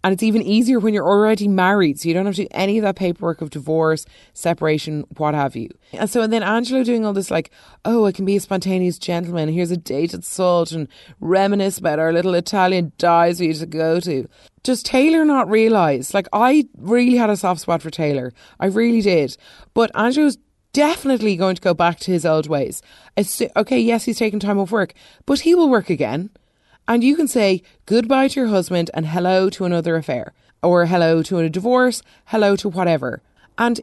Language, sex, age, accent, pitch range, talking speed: English, female, 30-49, Irish, 165-220 Hz, 210 wpm